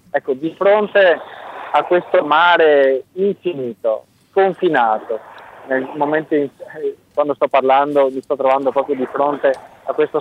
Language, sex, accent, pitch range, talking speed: Italian, male, native, 130-170 Hz, 130 wpm